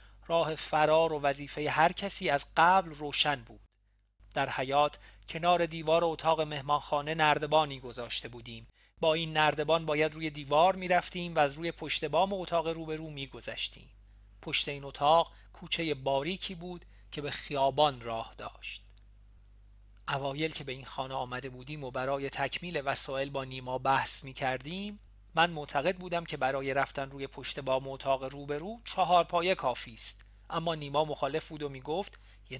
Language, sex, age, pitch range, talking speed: Persian, male, 40-59, 125-160 Hz, 160 wpm